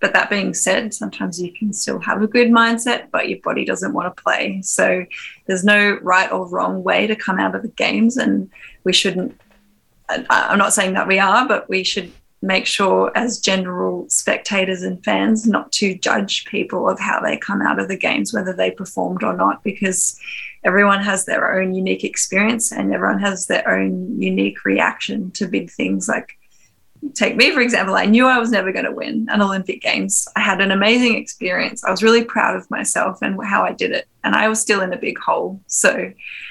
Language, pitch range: English, 185-220 Hz